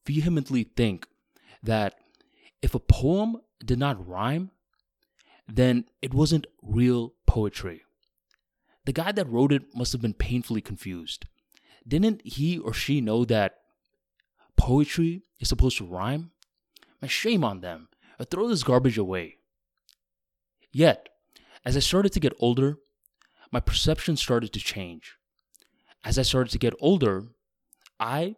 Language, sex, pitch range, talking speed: English, male, 105-140 Hz, 135 wpm